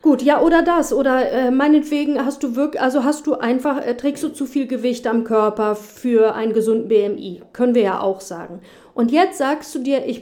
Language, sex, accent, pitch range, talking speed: German, female, German, 225-285 Hz, 215 wpm